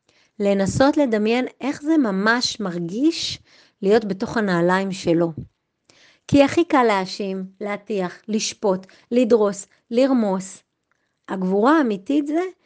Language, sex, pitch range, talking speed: Hebrew, female, 190-270 Hz, 100 wpm